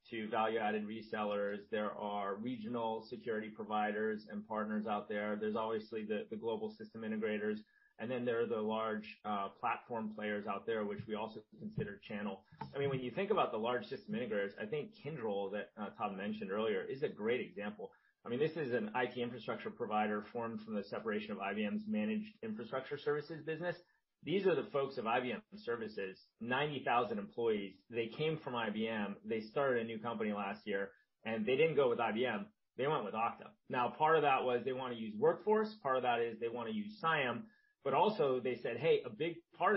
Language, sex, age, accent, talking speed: English, male, 30-49, American, 200 wpm